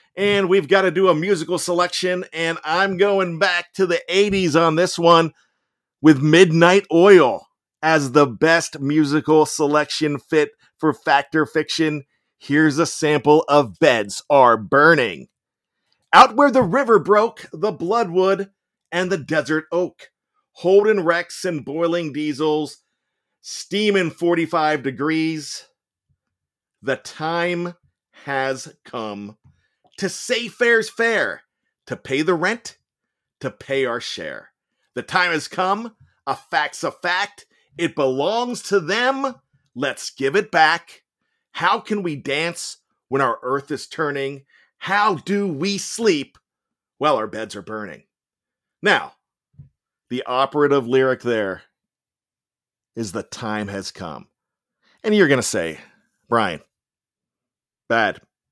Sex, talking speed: male, 125 wpm